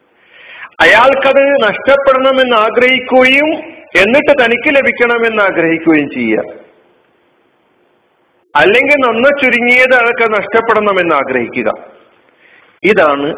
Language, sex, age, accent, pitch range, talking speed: Malayalam, male, 50-69, native, 160-245 Hz, 70 wpm